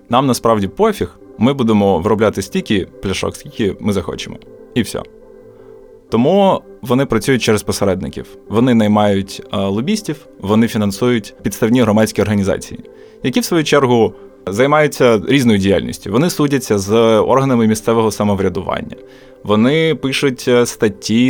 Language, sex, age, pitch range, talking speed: Ukrainian, male, 20-39, 105-135 Hz, 120 wpm